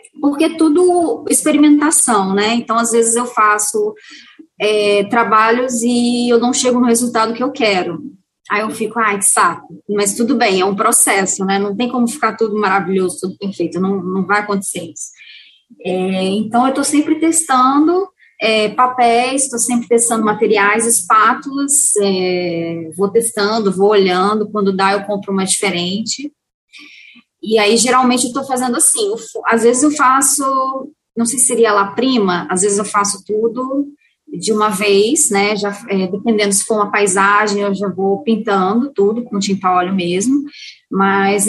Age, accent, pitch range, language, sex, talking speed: 20-39, Brazilian, 200-260 Hz, Portuguese, female, 160 wpm